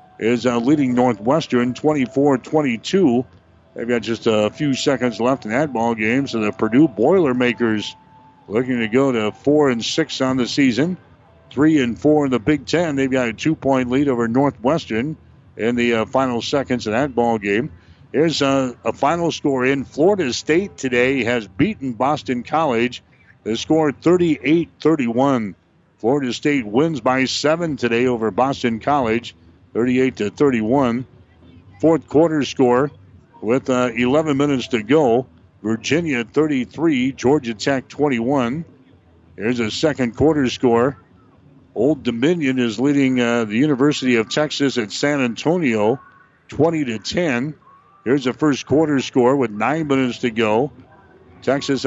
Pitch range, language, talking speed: 120-145 Hz, English, 140 wpm